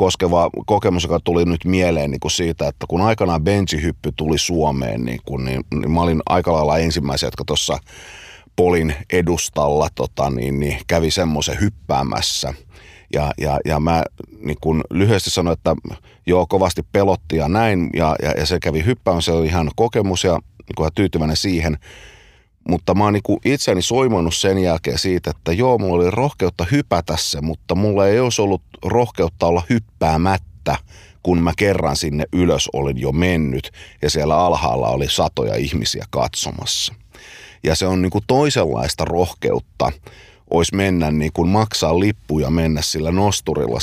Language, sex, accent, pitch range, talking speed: Finnish, male, native, 75-95 Hz, 155 wpm